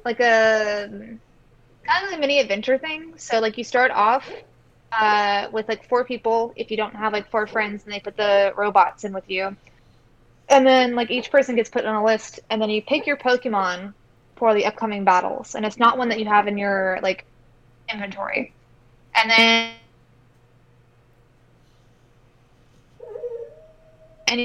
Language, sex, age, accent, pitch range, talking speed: English, female, 20-39, American, 200-240 Hz, 160 wpm